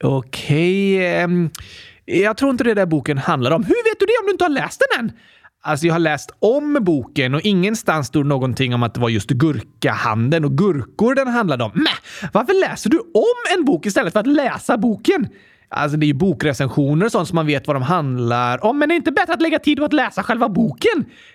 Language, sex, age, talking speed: Swedish, male, 30-49, 230 wpm